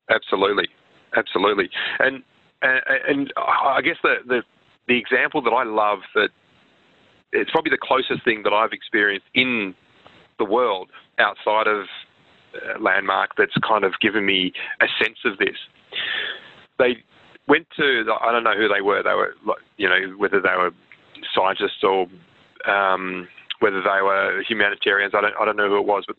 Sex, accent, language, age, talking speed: male, Australian, English, 30-49, 165 wpm